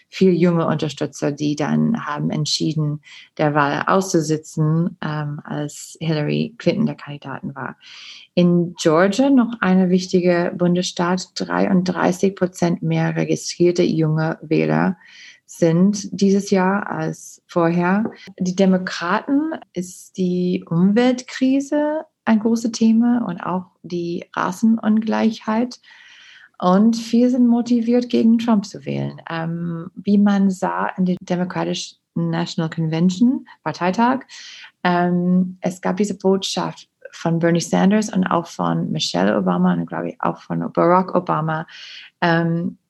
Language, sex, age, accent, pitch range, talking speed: German, female, 30-49, German, 165-210 Hz, 120 wpm